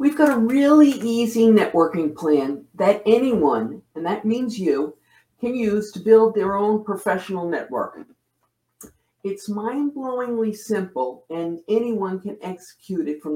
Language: English